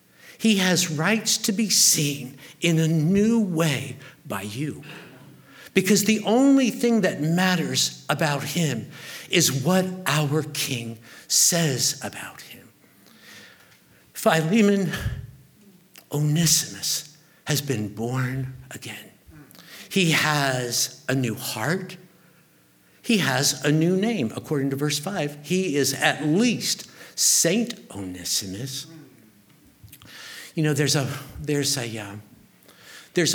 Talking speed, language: 110 wpm, English